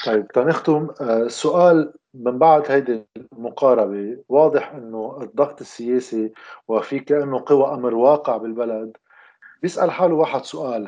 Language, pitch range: Arabic, 130-175 Hz